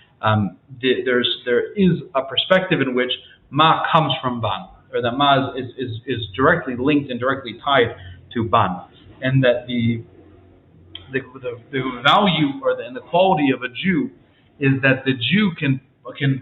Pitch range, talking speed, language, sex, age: 120-150 Hz, 175 wpm, English, male, 30-49